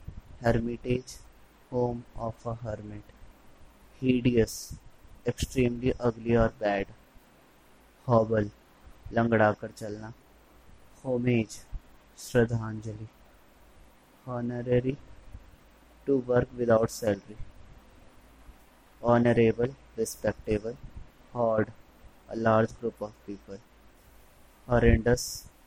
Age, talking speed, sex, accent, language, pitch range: 20-39, 75 wpm, male, native, Hindi, 105-120 Hz